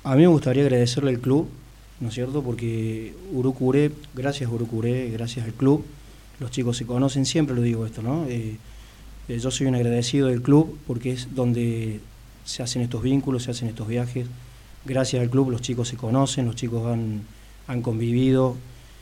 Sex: male